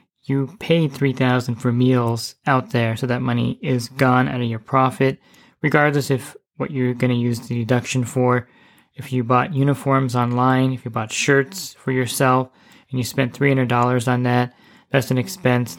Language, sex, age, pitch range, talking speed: English, male, 20-39, 120-135 Hz, 175 wpm